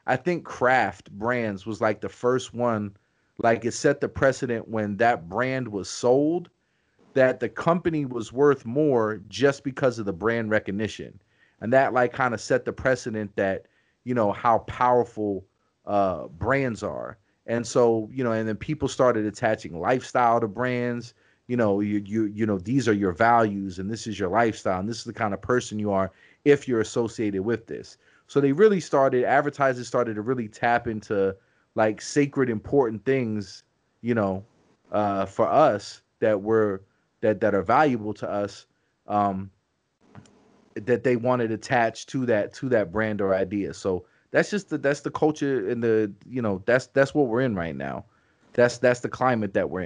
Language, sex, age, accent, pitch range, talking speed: English, male, 30-49, American, 105-130 Hz, 180 wpm